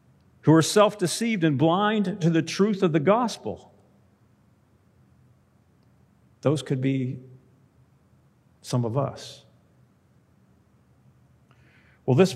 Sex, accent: male, American